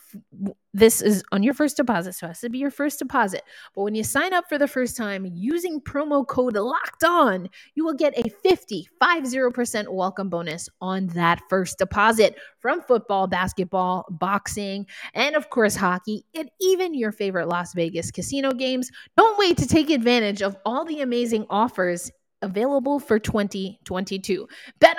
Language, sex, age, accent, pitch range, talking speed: English, female, 20-39, American, 200-285 Hz, 165 wpm